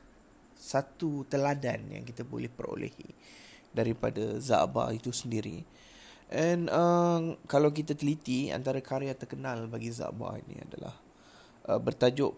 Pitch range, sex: 120-150 Hz, male